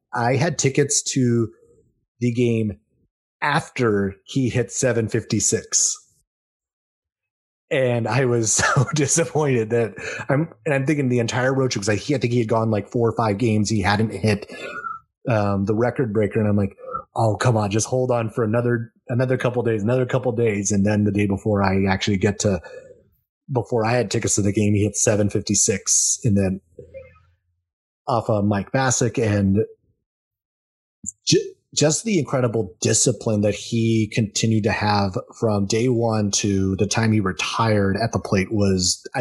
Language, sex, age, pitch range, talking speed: English, male, 30-49, 105-125 Hz, 170 wpm